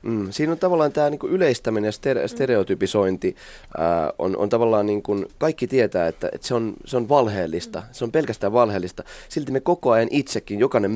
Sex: male